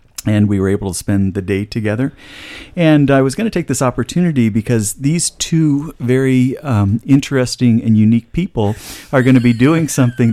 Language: English